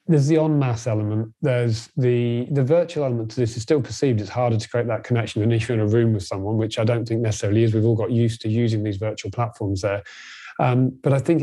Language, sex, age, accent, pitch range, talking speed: English, male, 30-49, British, 110-130 Hz, 255 wpm